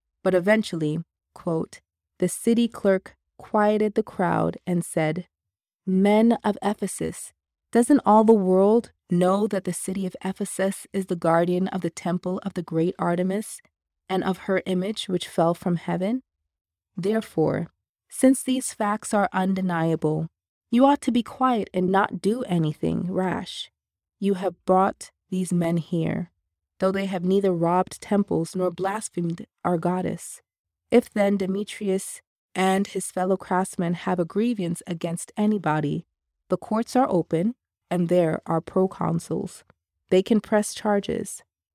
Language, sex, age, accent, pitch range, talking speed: English, female, 20-39, American, 165-200 Hz, 140 wpm